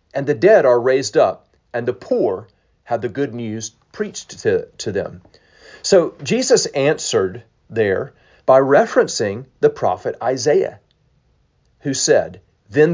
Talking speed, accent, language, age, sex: 135 wpm, American, English, 40-59, male